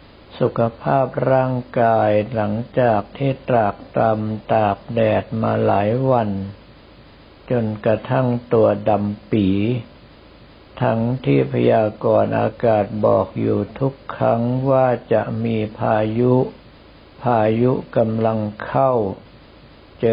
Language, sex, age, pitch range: Thai, male, 60-79, 110-125 Hz